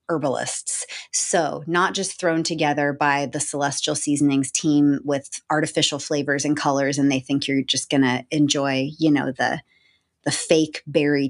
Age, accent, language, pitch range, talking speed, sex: 30-49, American, English, 145-195 Hz, 160 wpm, female